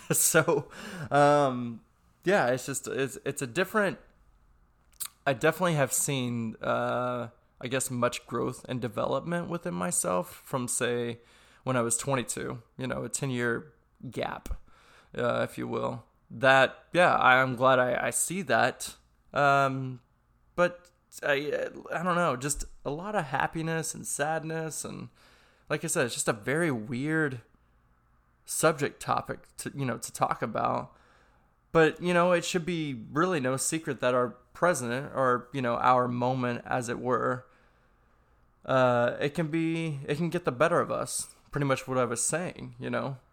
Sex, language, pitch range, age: male, English, 120-150 Hz, 20-39